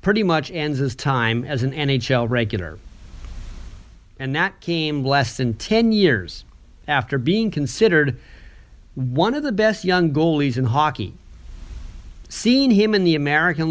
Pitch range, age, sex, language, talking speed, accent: 125-170 Hz, 40-59, male, English, 140 wpm, American